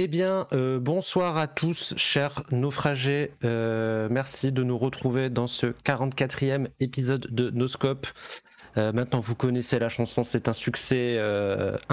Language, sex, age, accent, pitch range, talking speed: French, male, 30-49, French, 120-145 Hz, 150 wpm